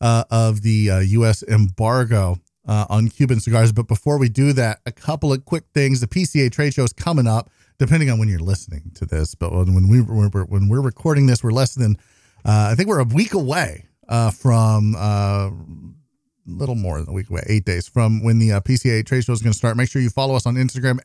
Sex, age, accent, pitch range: male, 40-59, American, 105-135 Hz